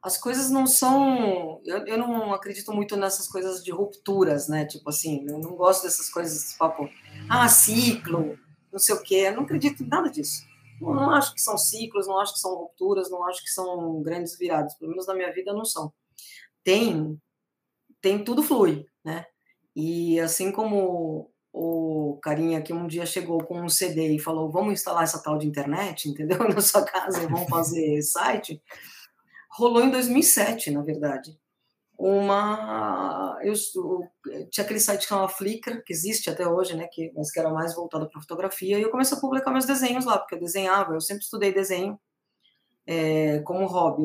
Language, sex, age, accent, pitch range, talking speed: Portuguese, female, 20-39, Brazilian, 160-210 Hz, 185 wpm